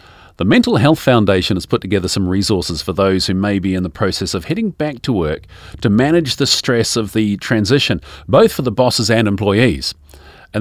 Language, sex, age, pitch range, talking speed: English, male, 40-59, 90-125 Hz, 205 wpm